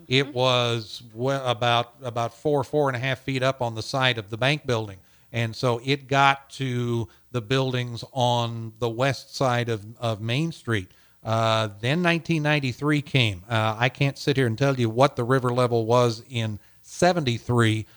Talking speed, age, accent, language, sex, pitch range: 175 wpm, 50-69, American, English, male, 115-135 Hz